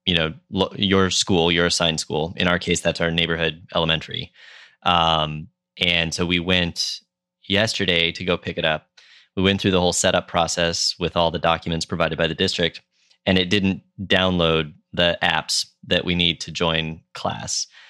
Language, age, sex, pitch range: English, 20-39, male, 80-95 Hz